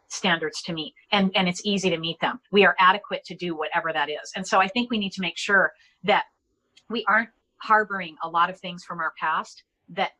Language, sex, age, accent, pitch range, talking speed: English, female, 40-59, American, 175-210 Hz, 230 wpm